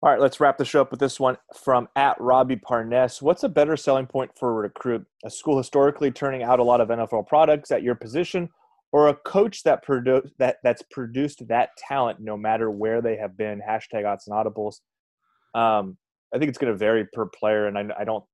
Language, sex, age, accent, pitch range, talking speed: English, male, 20-39, American, 105-130 Hz, 215 wpm